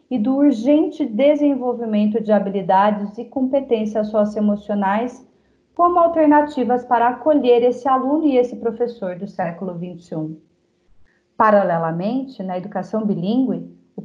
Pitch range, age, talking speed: 200-260 Hz, 40-59, 110 wpm